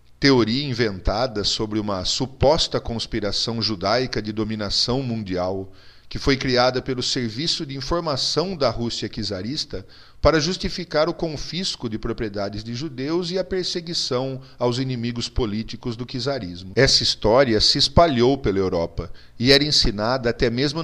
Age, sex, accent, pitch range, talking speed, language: 40-59, male, Brazilian, 105-140 Hz, 135 wpm, Portuguese